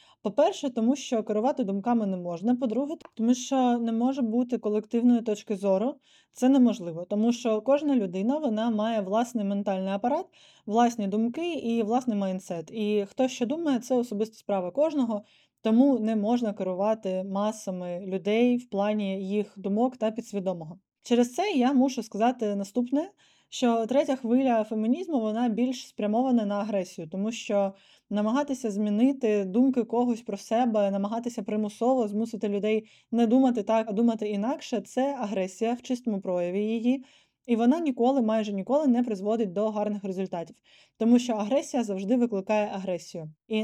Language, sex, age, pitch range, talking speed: Ukrainian, female, 20-39, 205-245 Hz, 150 wpm